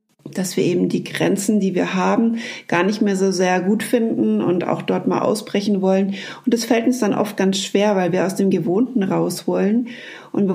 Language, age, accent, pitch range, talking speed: German, 30-49, German, 190-235 Hz, 215 wpm